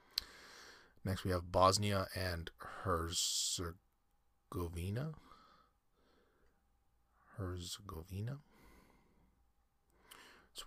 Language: English